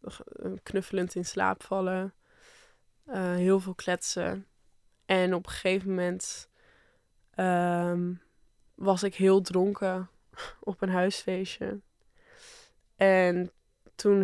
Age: 20-39